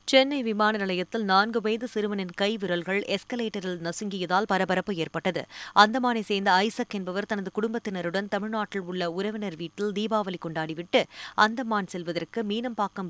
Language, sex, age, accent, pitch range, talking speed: Tamil, female, 20-39, native, 180-225 Hz, 125 wpm